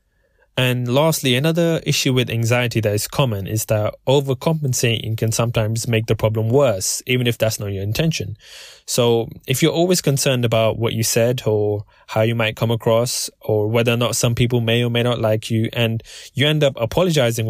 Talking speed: 190 wpm